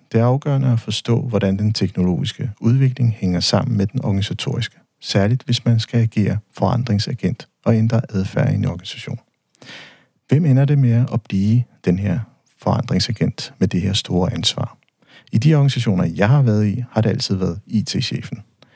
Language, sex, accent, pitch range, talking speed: Danish, male, native, 100-130 Hz, 165 wpm